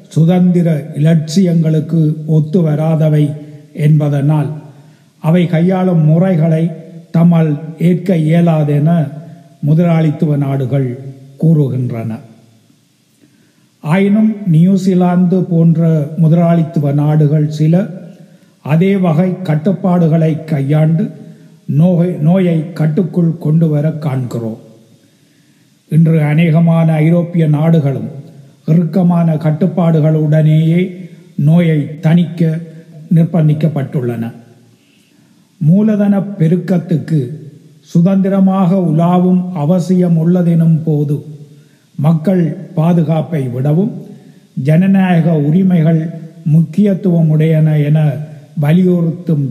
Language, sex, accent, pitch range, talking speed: Tamil, male, native, 150-180 Hz, 65 wpm